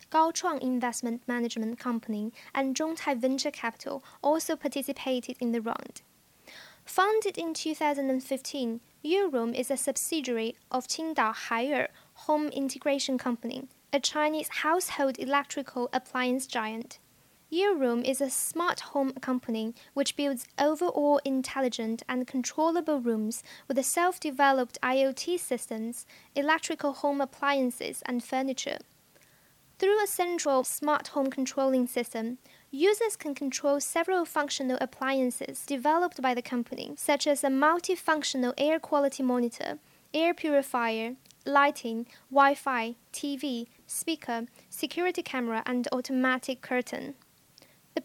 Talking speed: 115 wpm